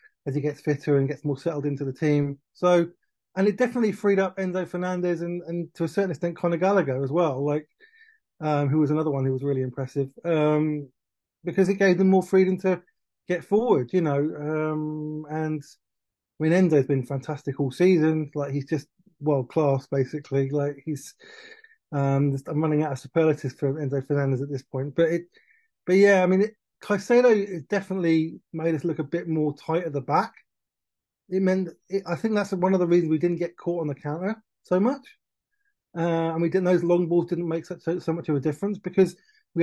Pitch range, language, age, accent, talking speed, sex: 150-190 Hz, English, 20-39, British, 205 wpm, male